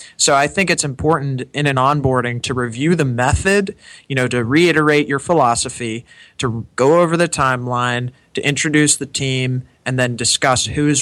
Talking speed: 175 wpm